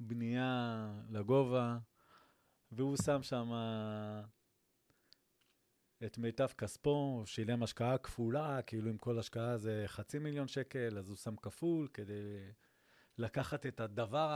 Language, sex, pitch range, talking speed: Hebrew, male, 110-135 Hz, 115 wpm